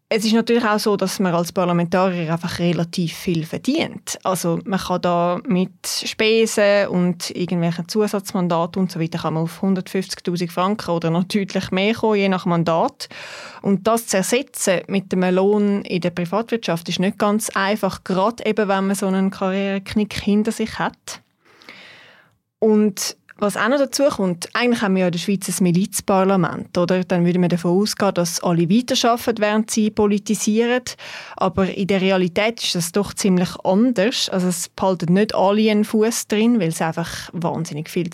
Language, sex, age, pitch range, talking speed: German, female, 20-39, 180-215 Hz, 170 wpm